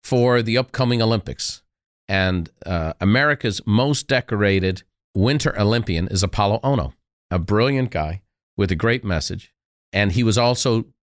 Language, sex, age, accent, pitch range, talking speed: English, male, 40-59, American, 100-135 Hz, 135 wpm